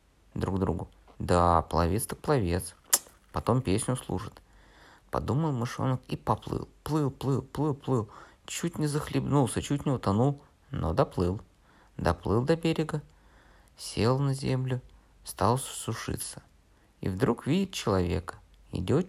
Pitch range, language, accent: 90-135 Hz, Russian, native